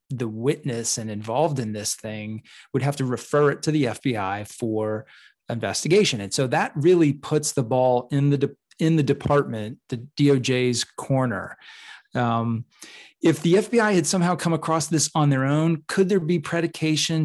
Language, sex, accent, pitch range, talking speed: English, male, American, 120-150 Hz, 165 wpm